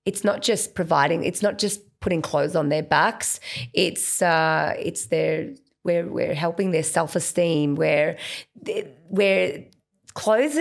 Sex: female